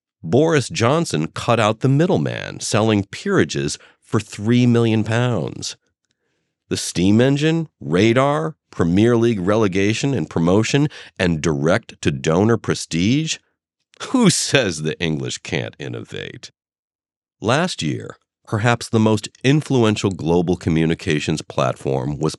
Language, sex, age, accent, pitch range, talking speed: English, male, 50-69, American, 80-120 Hz, 105 wpm